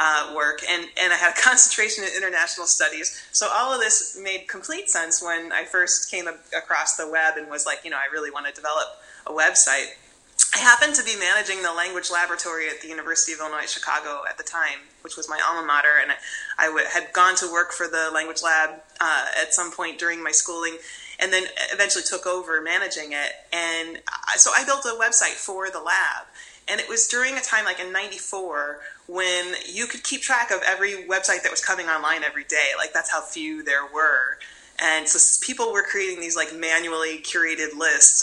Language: English